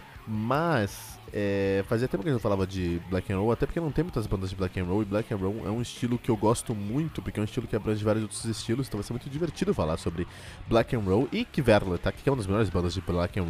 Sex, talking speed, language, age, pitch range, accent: male, 285 wpm, Portuguese, 20-39, 95-125 Hz, Brazilian